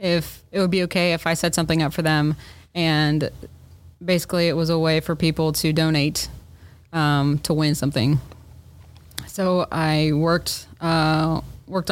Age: 20-39